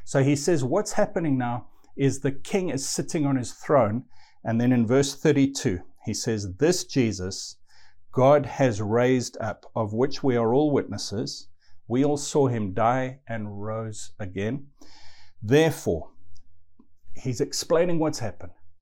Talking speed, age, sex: 145 wpm, 50-69, male